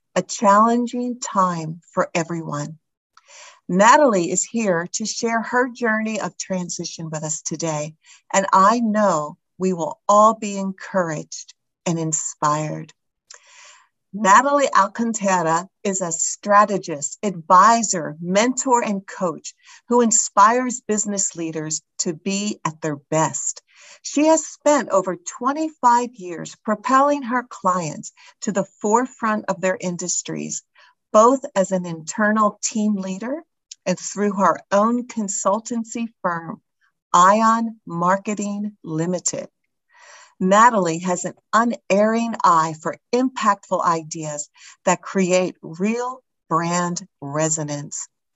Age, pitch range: 50-69, 170-230 Hz